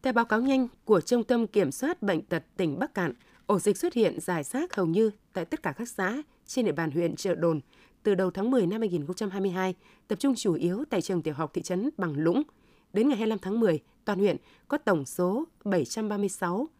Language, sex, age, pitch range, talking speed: Vietnamese, female, 20-39, 180-230 Hz, 220 wpm